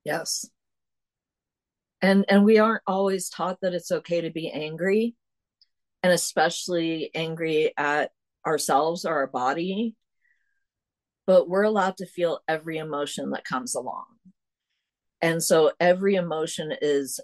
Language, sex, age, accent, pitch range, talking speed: English, female, 50-69, American, 155-200 Hz, 125 wpm